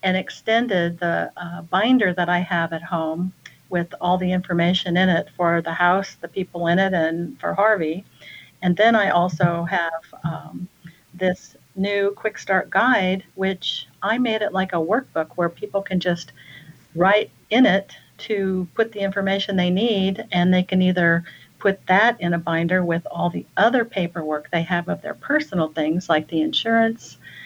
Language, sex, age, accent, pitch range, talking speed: English, female, 50-69, American, 170-205 Hz, 175 wpm